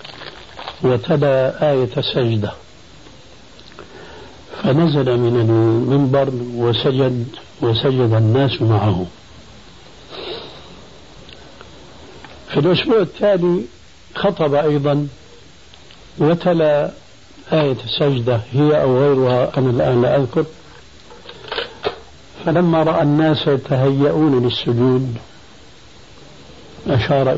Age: 60-79